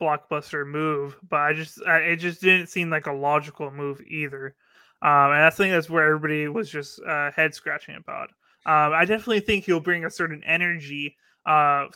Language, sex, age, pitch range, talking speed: English, male, 20-39, 150-170 Hz, 190 wpm